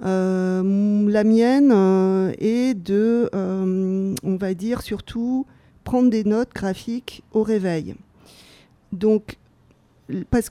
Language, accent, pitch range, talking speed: French, French, 185-225 Hz, 110 wpm